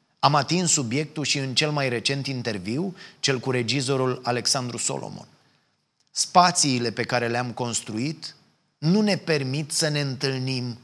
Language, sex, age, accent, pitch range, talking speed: Romanian, male, 30-49, native, 120-150 Hz, 140 wpm